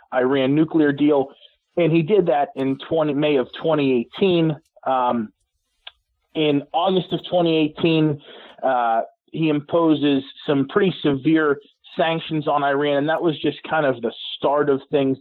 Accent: American